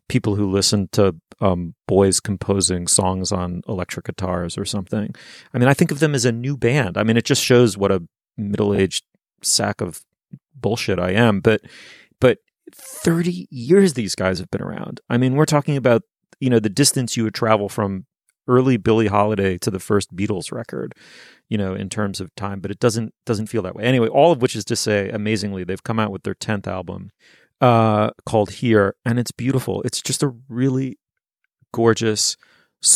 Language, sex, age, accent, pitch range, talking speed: English, male, 30-49, American, 100-120 Hz, 190 wpm